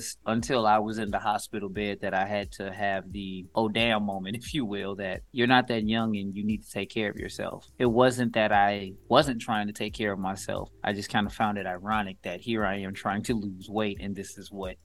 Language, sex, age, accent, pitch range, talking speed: English, male, 20-39, American, 100-110 Hz, 250 wpm